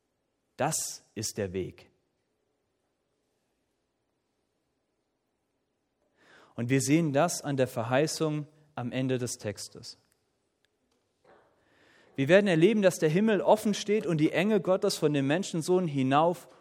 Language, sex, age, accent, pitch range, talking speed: German, male, 40-59, German, 125-180 Hz, 110 wpm